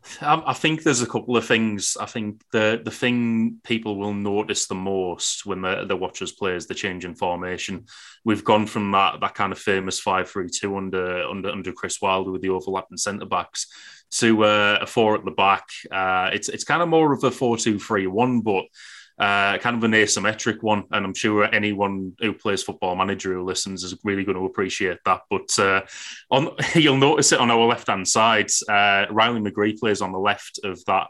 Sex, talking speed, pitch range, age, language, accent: male, 210 wpm, 95-110 Hz, 20-39, English, British